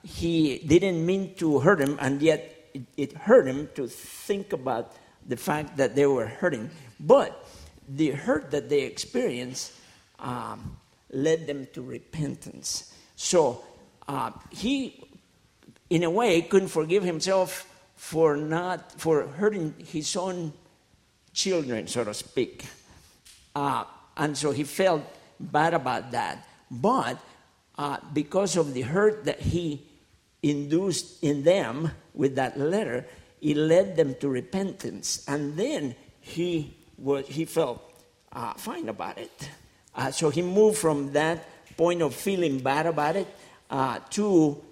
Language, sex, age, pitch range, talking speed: English, male, 50-69, 140-175 Hz, 135 wpm